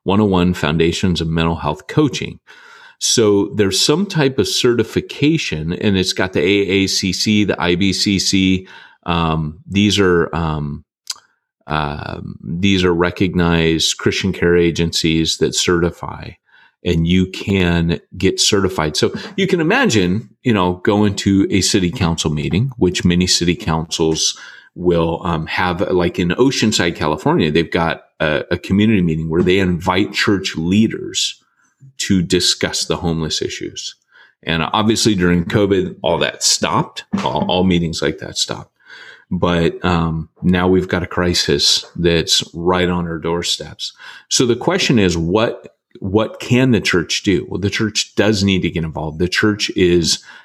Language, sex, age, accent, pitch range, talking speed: English, male, 30-49, American, 85-105 Hz, 150 wpm